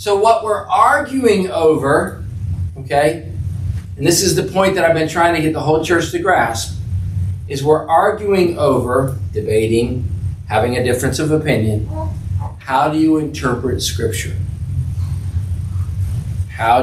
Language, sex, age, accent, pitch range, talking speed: English, male, 50-69, American, 95-160 Hz, 135 wpm